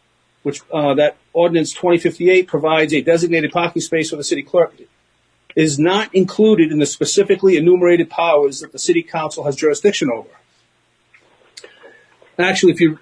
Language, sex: English, male